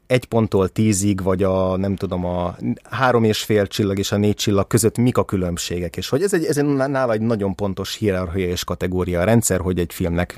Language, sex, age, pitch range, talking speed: Hungarian, male, 30-49, 90-110 Hz, 220 wpm